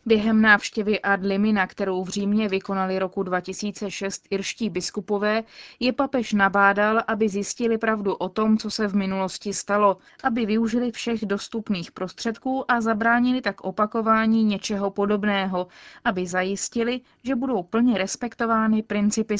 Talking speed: 135 wpm